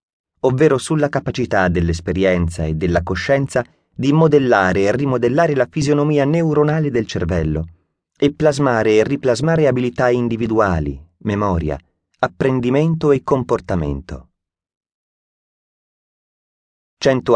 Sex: male